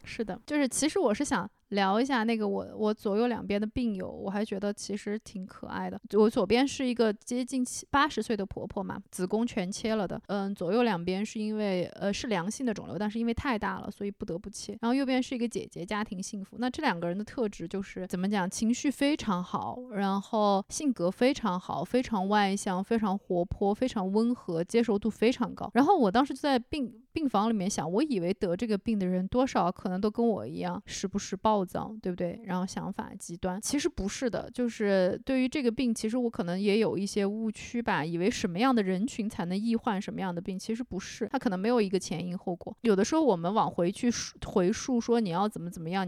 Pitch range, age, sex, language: 195-240 Hz, 20-39, female, Chinese